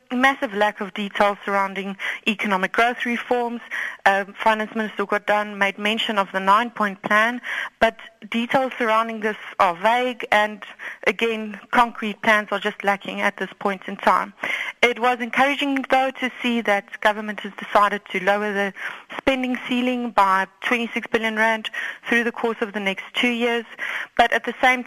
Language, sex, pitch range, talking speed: English, female, 205-240 Hz, 160 wpm